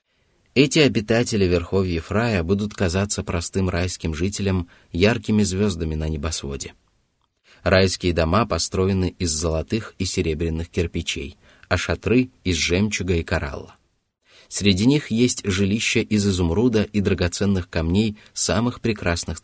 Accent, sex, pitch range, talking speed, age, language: native, male, 85-105 Hz, 120 wpm, 30-49, Russian